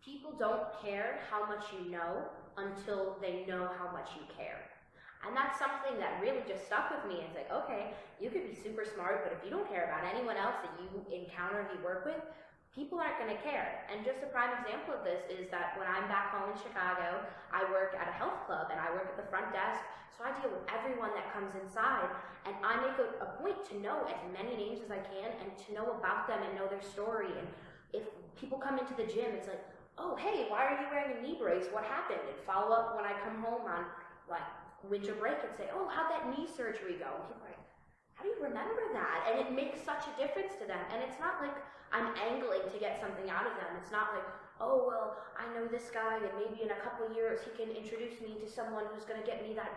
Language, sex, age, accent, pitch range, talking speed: English, female, 10-29, American, 200-275 Hz, 245 wpm